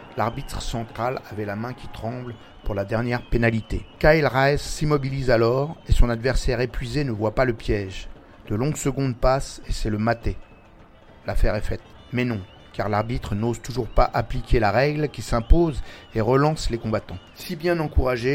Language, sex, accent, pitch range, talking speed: French, male, French, 105-130 Hz, 175 wpm